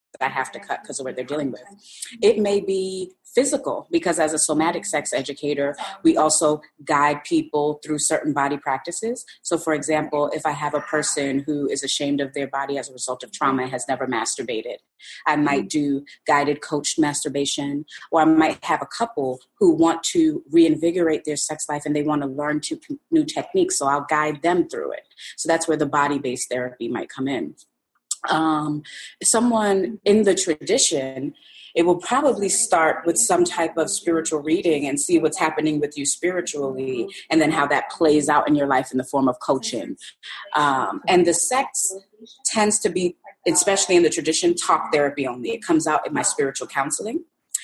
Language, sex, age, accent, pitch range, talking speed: English, female, 30-49, American, 145-175 Hz, 190 wpm